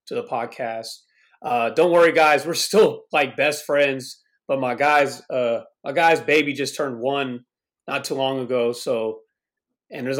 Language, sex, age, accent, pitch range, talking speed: English, male, 30-49, American, 130-160 Hz, 170 wpm